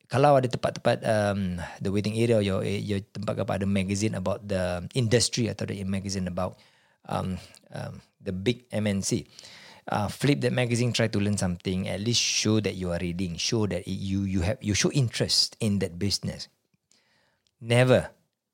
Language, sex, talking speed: Malay, male, 170 wpm